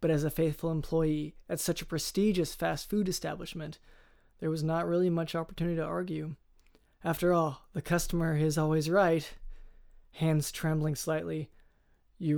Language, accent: English, American